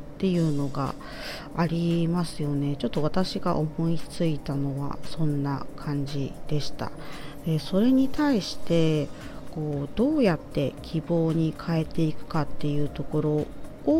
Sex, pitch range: female, 145-175 Hz